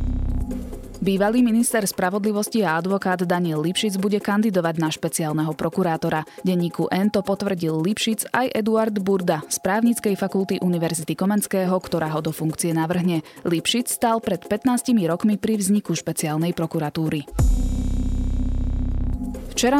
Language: Slovak